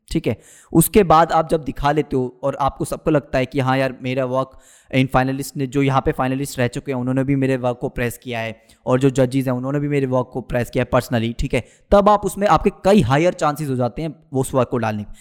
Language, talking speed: Hindi, 260 wpm